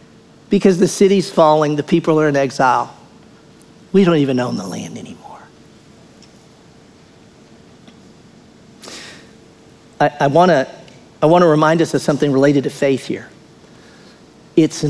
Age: 50-69